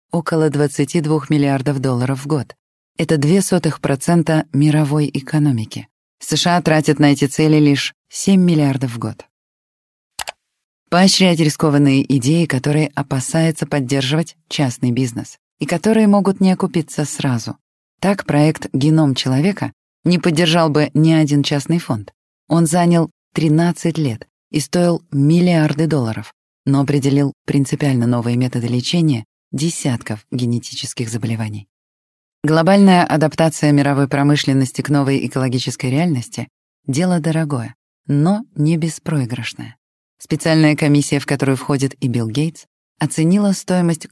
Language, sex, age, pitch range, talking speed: Russian, female, 20-39, 135-160 Hz, 115 wpm